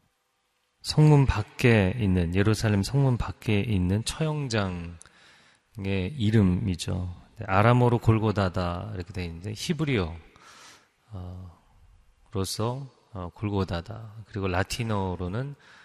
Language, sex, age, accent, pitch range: Korean, male, 30-49, native, 95-115 Hz